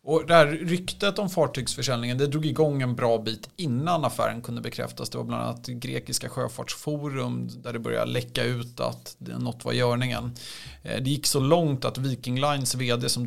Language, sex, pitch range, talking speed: Swedish, male, 115-145 Hz, 180 wpm